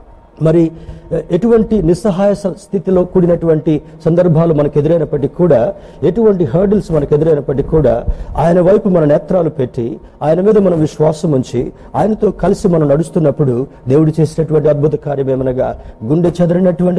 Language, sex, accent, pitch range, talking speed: Telugu, male, native, 140-180 Hz, 115 wpm